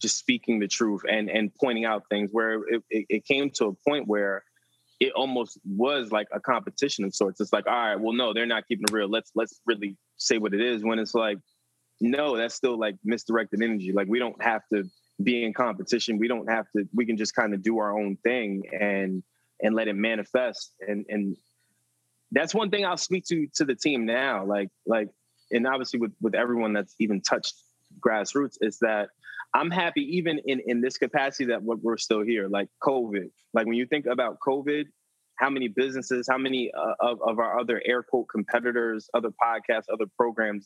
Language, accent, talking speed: English, American, 205 wpm